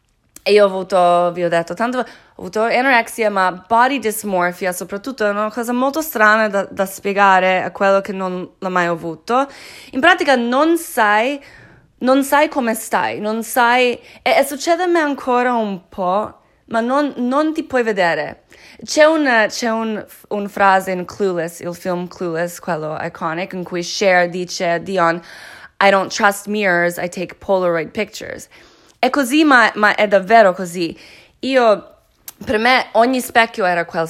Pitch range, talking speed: 185-235 Hz, 165 wpm